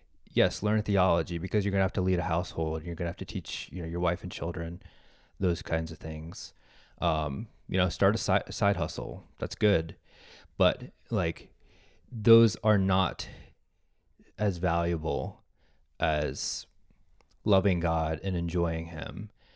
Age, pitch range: 30-49, 80-95 Hz